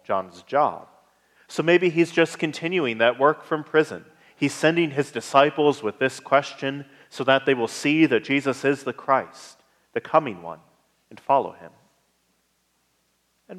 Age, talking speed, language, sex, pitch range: 30-49, 155 wpm, English, male, 120-150 Hz